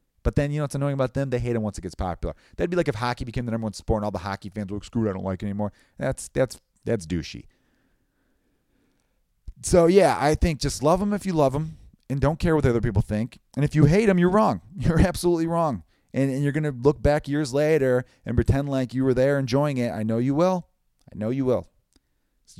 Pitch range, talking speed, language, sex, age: 105-140 Hz, 260 wpm, English, male, 30-49